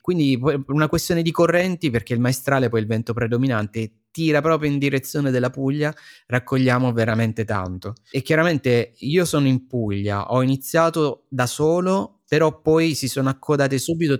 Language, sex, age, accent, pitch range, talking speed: Italian, male, 20-39, native, 110-135 Hz, 155 wpm